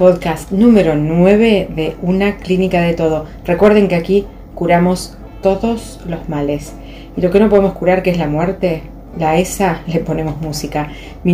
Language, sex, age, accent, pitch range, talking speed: Spanish, female, 30-49, Argentinian, 155-180 Hz, 165 wpm